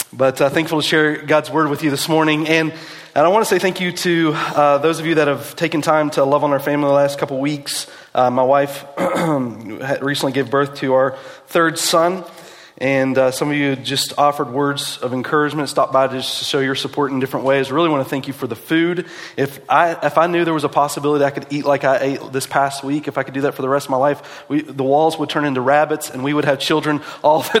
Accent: American